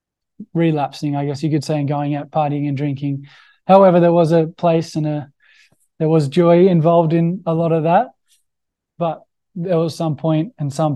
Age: 20-39